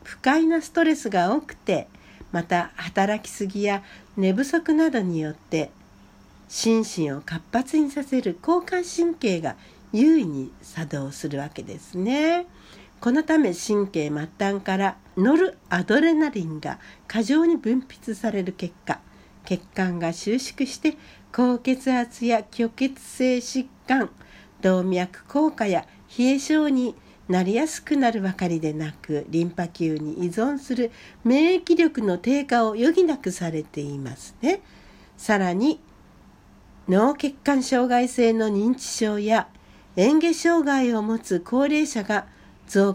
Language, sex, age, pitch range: Japanese, female, 60-79, 180-280 Hz